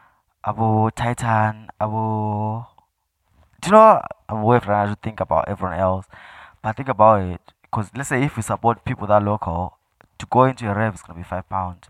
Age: 20-39